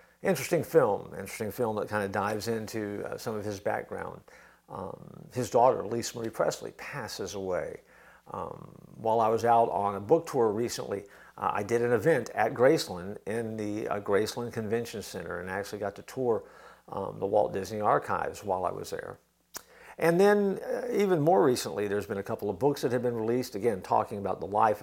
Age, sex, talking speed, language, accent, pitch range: 50-69, male, 195 wpm, English, American, 105-160 Hz